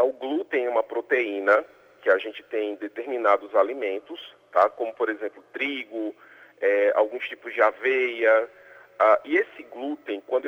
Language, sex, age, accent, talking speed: Portuguese, male, 40-59, Brazilian, 155 wpm